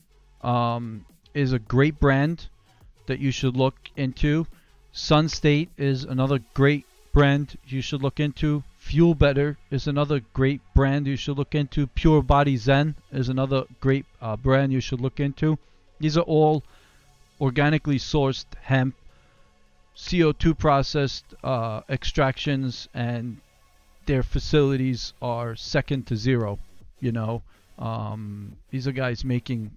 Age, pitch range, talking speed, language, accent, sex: 40-59, 110-145 Hz, 135 wpm, English, American, male